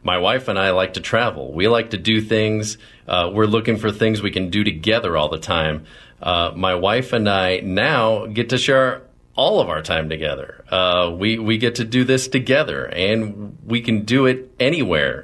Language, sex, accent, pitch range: English, male, American, 85-110 Hz